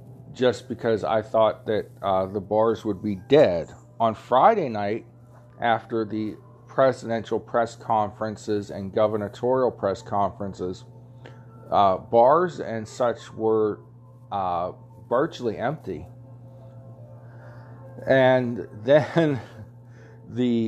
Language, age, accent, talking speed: English, 40-59, American, 100 wpm